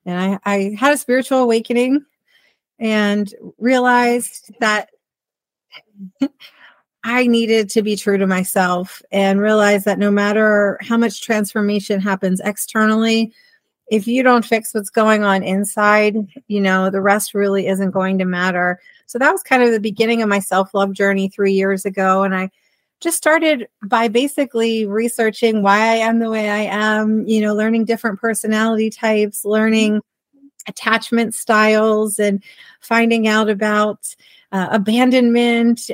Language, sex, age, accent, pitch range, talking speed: English, female, 40-59, American, 200-235 Hz, 145 wpm